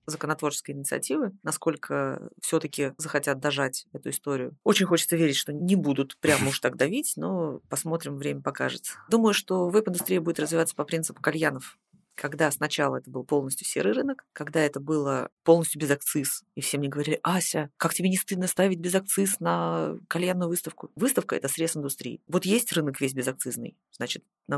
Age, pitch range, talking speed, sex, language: 30-49, 145-180 Hz, 175 wpm, female, Russian